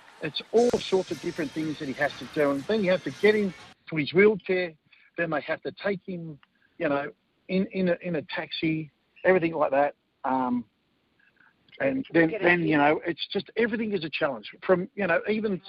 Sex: male